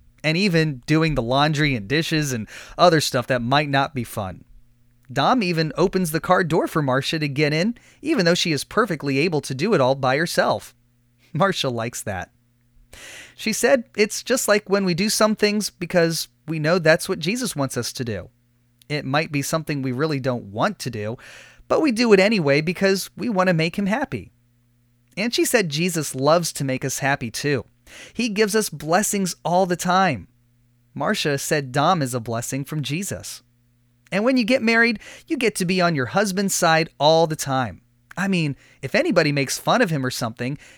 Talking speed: 195 wpm